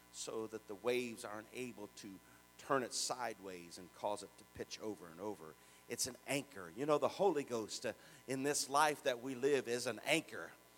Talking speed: 200 wpm